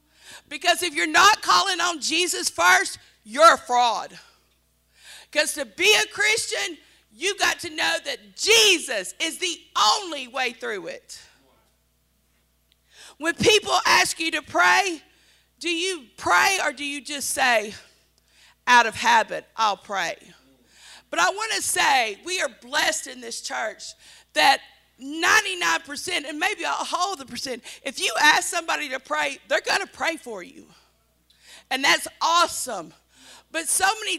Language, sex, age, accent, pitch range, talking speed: English, female, 50-69, American, 265-360 Hz, 150 wpm